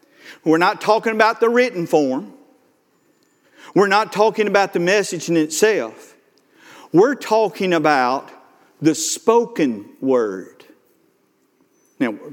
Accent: American